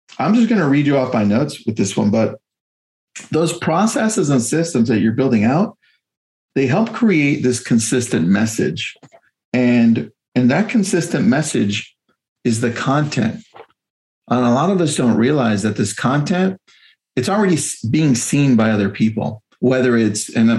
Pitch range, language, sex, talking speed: 115-165 Hz, English, male, 160 wpm